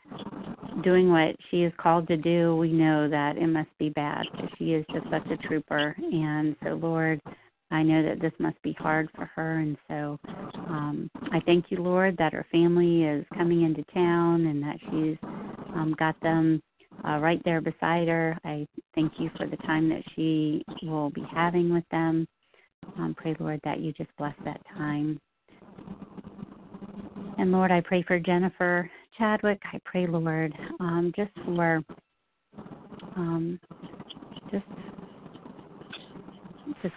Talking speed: 150 wpm